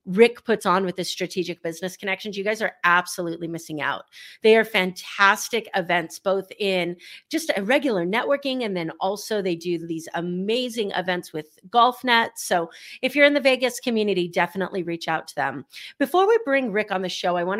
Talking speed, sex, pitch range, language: 190 wpm, female, 180-240 Hz, English